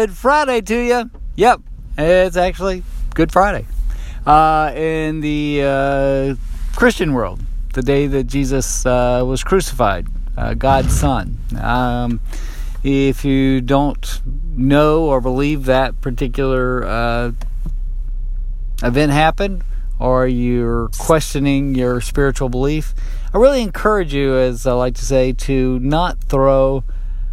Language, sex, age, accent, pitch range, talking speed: English, male, 50-69, American, 115-145 Hz, 120 wpm